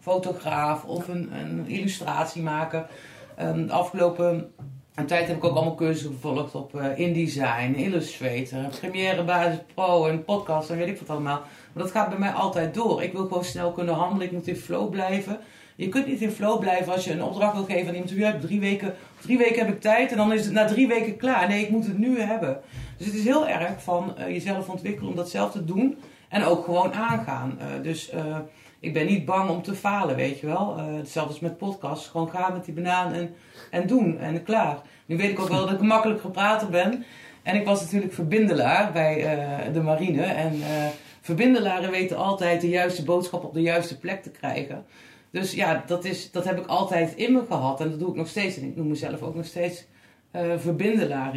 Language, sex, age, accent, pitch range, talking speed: Dutch, female, 40-59, Dutch, 155-195 Hz, 225 wpm